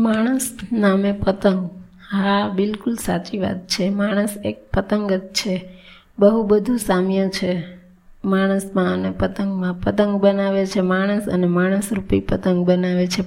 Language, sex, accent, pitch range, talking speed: Gujarati, female, native, 180-205 Hz, 125 wpm